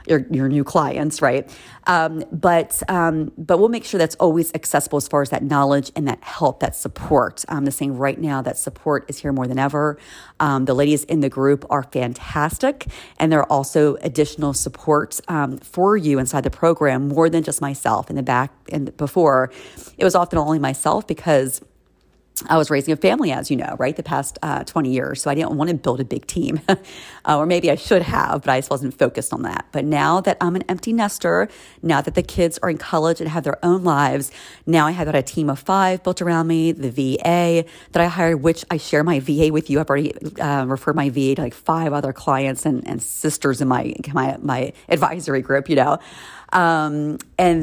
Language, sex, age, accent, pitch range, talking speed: English, female, 40-59, American, 140-165 Hz, 220 wpm